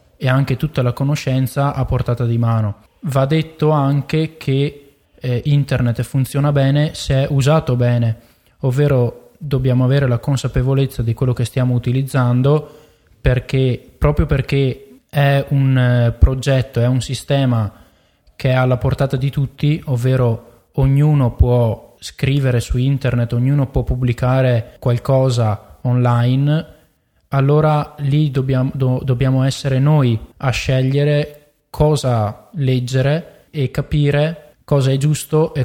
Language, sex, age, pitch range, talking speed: Italian, male, 20-39, 120-140 Hz, 125 wpm